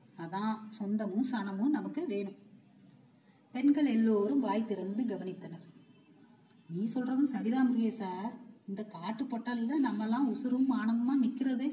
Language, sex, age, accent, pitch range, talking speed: Tamil, female, 30-49, native, 215-260 Hz, 115 wpm